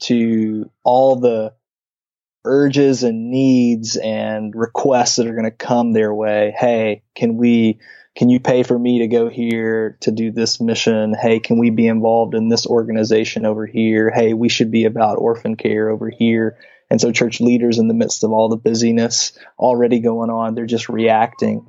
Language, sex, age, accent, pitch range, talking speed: English, male, 20-39, American, 115-125 Hz, 185 wpm